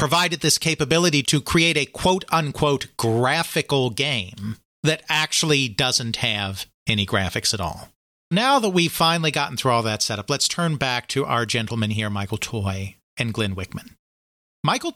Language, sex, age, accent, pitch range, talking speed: English, male, 40-59, American, 105-150 Hz, 155 wpm